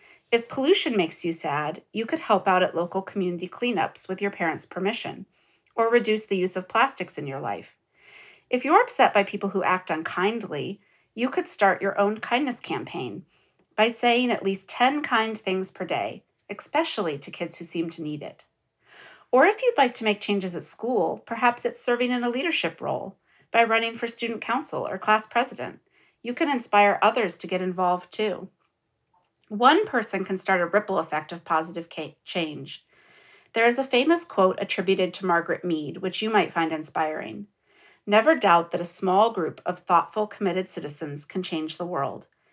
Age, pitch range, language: 40-59, 170-230 Hz, English